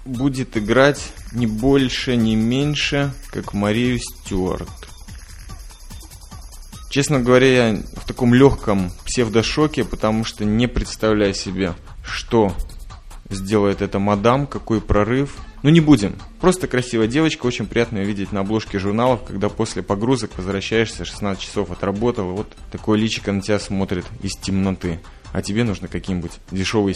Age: 20-39